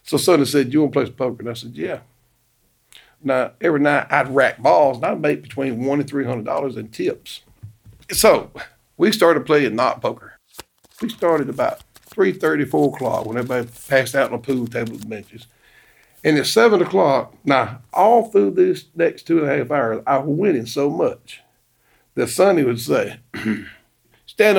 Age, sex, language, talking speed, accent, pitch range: 50-69, male, English, 185 wpm, American, 120-155 Hz